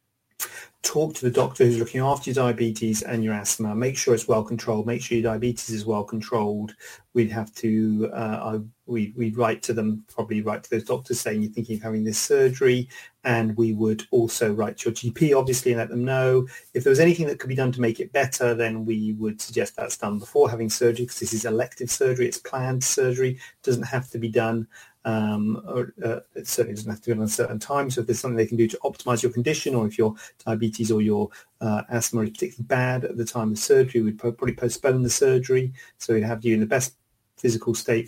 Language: English